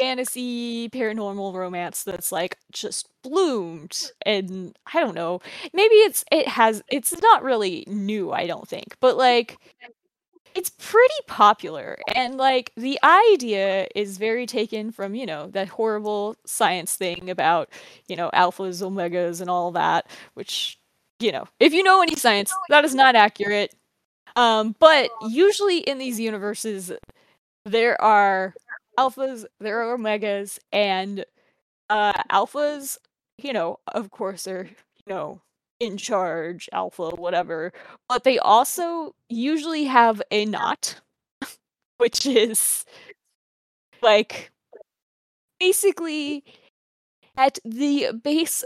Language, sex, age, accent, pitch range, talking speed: English, female, 20-39, American, 205-270 Hz, 125 wpm